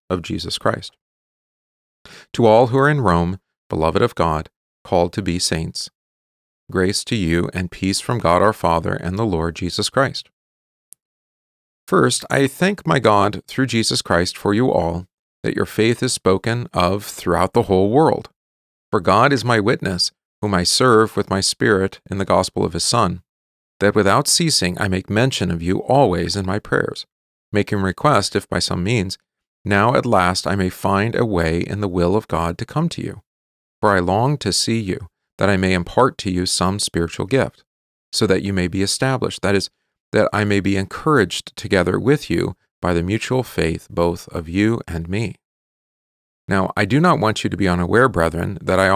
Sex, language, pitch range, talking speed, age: male, English, 85-110 Hz, 190 wpm, 40-59